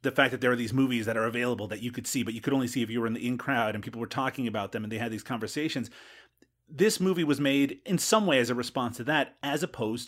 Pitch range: 115-140 Hz